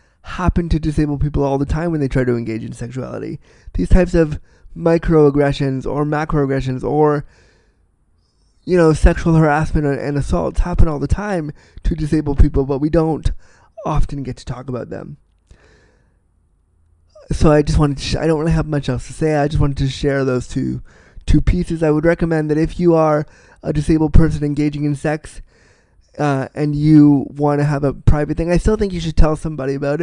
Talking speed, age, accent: 190 wpm, 20-39, American